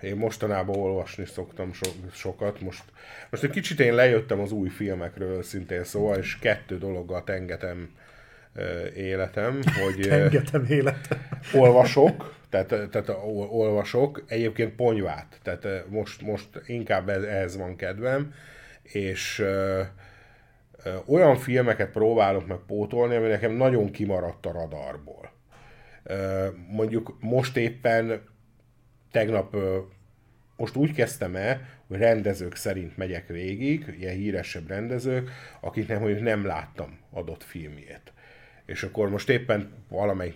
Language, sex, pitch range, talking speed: Hungarian, male, 95-115 Hz, 120 wpm